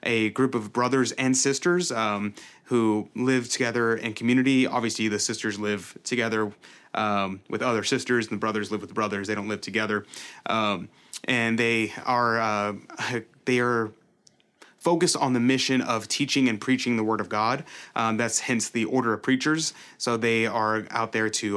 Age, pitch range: 30-49, 110-130 Hz